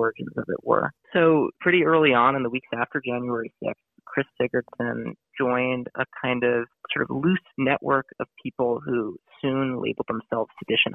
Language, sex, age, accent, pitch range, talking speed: English, male, 30-49, American, 120-140 Hz, 170 wpm